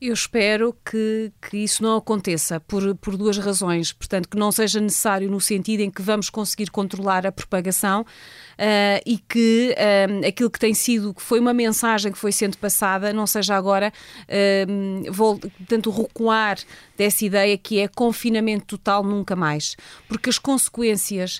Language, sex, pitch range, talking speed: Portuguese, female, 195-225 Hz, 165 wpm